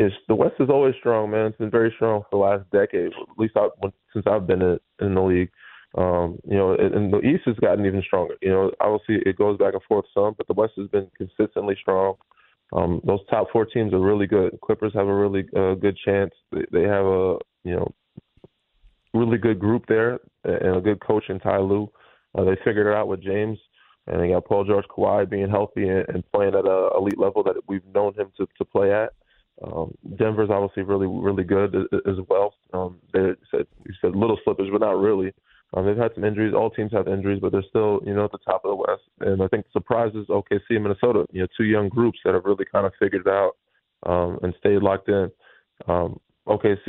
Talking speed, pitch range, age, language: 220 wpm, 95-105 Hz, 20-39, English